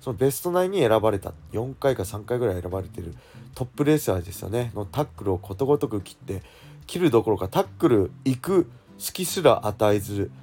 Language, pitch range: Japanese, 95-120 Hz